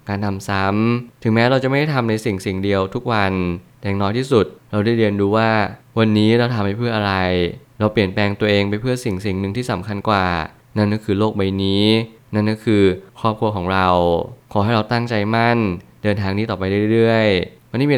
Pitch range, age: 100-115 Hz, 20-39